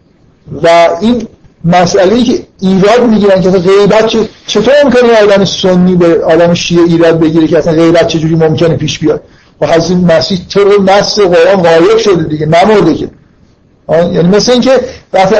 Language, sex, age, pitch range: Persian, male, 50-69, 165-195 Hz